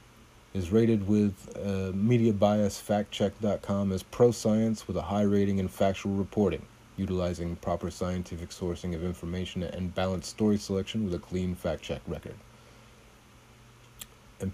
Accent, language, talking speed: American, English, 125 wpm